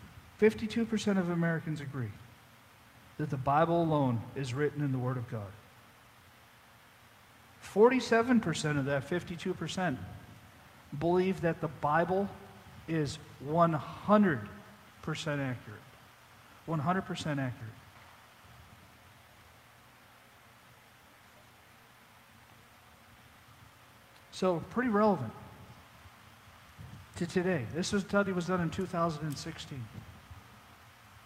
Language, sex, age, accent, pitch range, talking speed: English, male, 50-69, American, 115-170 Hz, 75 wpm